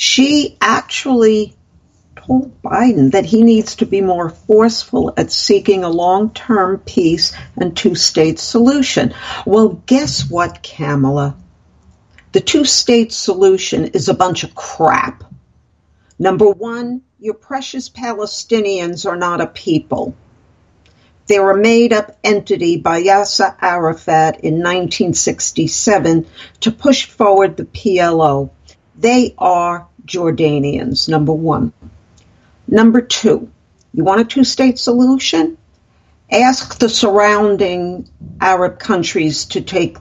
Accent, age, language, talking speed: American, 50-69, English, 110 wpm